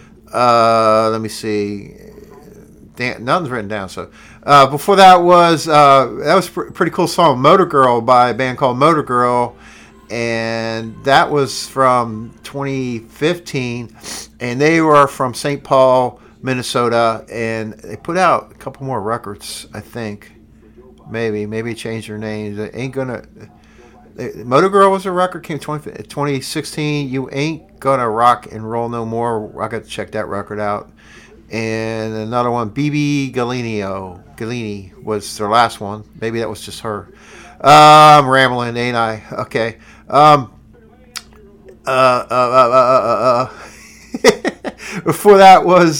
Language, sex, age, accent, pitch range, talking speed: English, male, 50-69, American, 110-145 Hz, 145 wpm